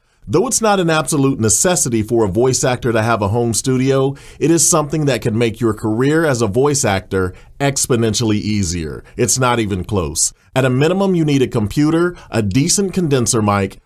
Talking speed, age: 190 wpm, 40-59